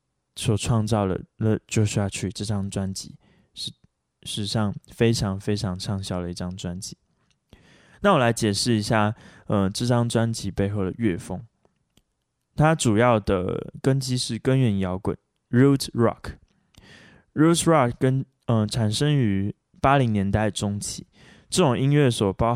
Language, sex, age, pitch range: Chinese, male, 20-39, 100-125 Hz